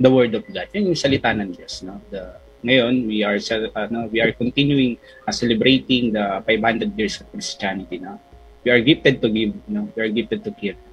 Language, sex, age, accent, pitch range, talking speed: English, male, 20-39, Filipino, 110-135 Hz, 210 wpm